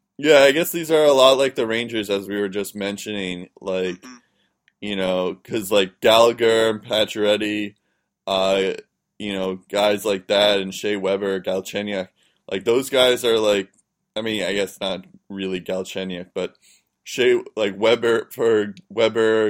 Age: 20-39